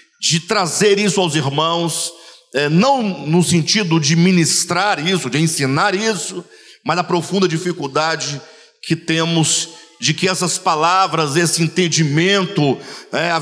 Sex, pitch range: male, 160-220 Hz